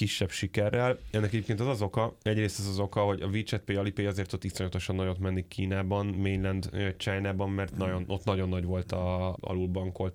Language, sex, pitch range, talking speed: Hungarian, male, 95-100 Hz, 190 wpm